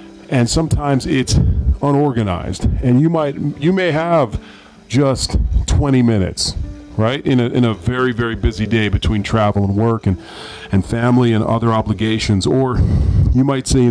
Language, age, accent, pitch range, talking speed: English, 40-59, American, 100-125 Hz, 160 wpm